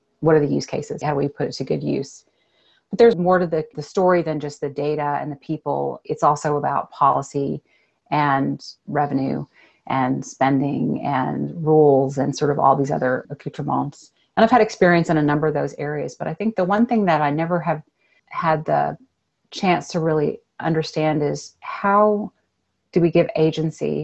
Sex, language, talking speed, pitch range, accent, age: female, English, 190 wpm, 145-170 Hz, American, 30-49